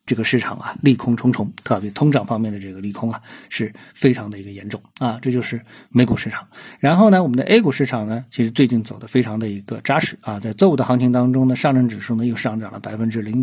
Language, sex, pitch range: Chinese, male, 110-135 Hz